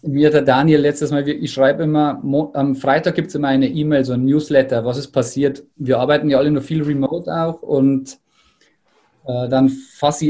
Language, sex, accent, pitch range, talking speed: German, male, German, 135-150 Hz, 205 wpm